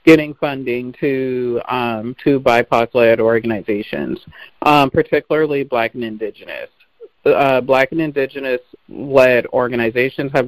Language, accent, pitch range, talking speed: English, American, 125-160 Hz, 105 wpm